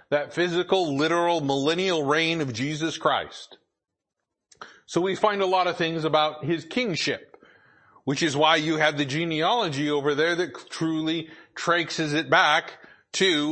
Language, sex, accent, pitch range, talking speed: English, male, American, 145-175 Hz, 145 wpm